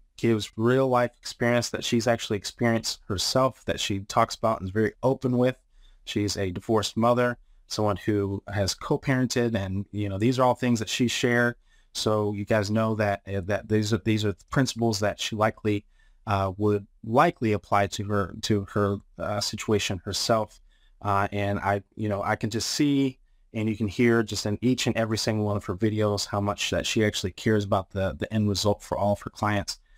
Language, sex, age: English, male, 30-49